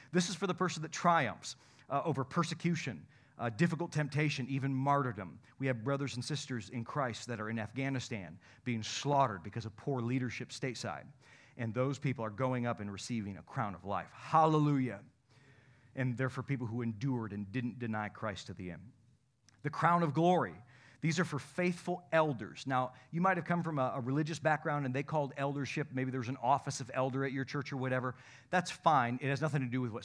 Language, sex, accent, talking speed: English, male, American, 205 wpm